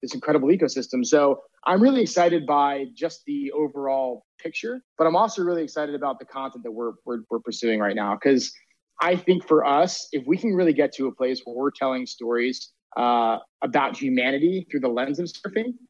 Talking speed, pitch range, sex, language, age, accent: 195 wpm, 130-165 Hz, male, English, 20-39, American